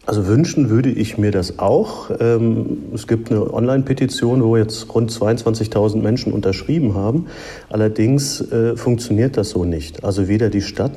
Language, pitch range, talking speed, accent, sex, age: German, 100-115 Hz, 150 wpm, German, male, 40-59